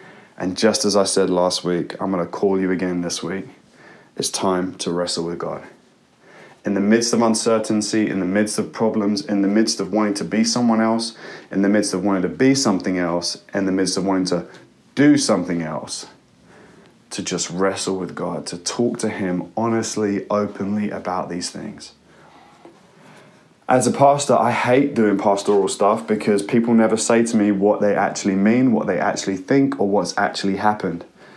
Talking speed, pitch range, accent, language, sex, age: 185 wpm, 95-110 Hz, British, English, male, 20-39